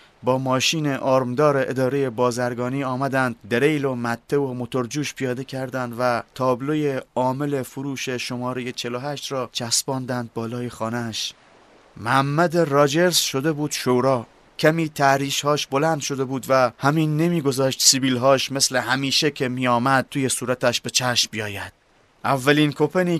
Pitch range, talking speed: 125-150 Hz, 130 wpm